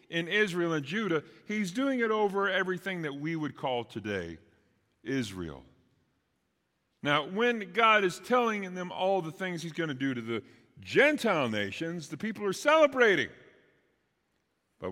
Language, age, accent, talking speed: English, 40-59, American, 150 wpm